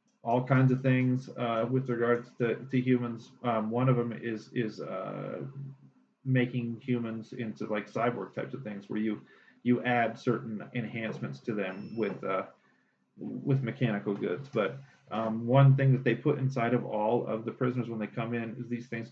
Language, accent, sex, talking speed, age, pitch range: English, American, male, 180 wpm, 40-59, 110-130 Hz